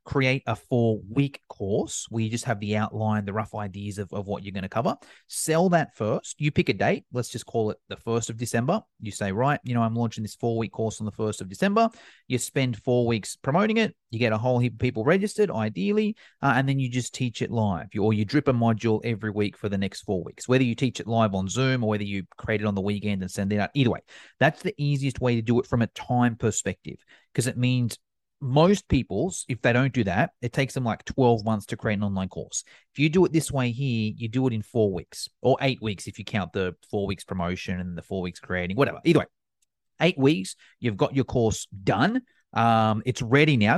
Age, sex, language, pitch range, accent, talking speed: 30-49, male, English, 105-135 Hz, Australian, 245 wpm